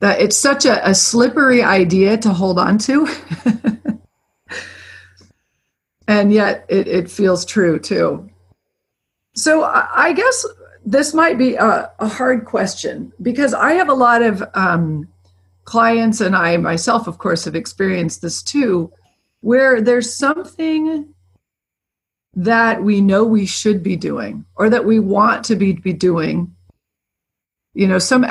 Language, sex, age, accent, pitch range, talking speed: English, female, 40-59, American, 165-240 Hz, 140 wpm